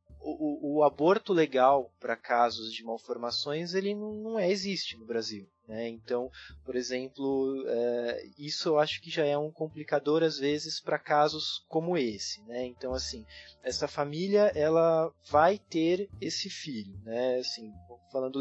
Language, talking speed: Portuguese, 155 wpm